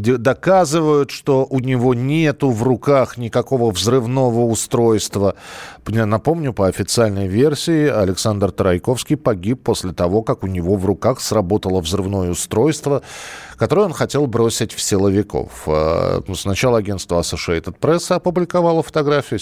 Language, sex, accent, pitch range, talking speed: Russian, male, native, 95-145 Hz, 125 wpm